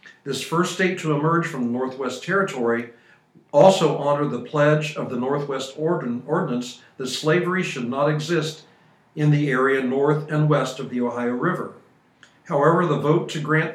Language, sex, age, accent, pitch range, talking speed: English, male, 60-79, American, 130-155 Hz, 160 wpm